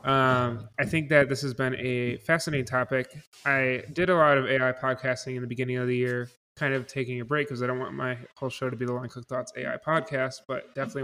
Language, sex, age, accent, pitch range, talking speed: English, male, 20-39, American, 125-135 Hz, 245 wpm